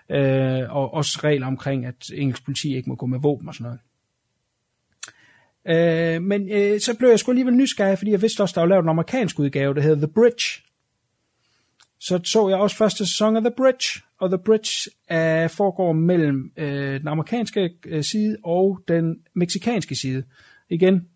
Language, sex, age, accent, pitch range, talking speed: Danish, male, 30-49, native, 145-200 Hz, 185 wpm